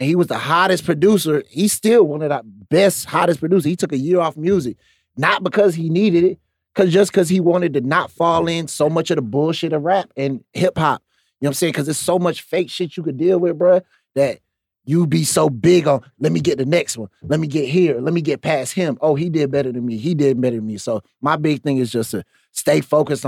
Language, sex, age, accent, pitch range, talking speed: English, male, 30-49, American, 125-165 Hz, 260 wpm